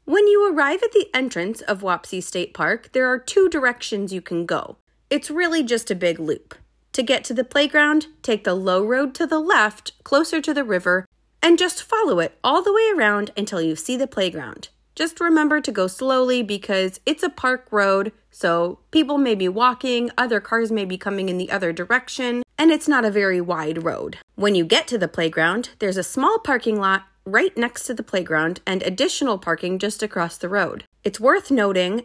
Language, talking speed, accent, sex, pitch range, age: English, 205 wpm, American, female, 185-260 Hz, 30-49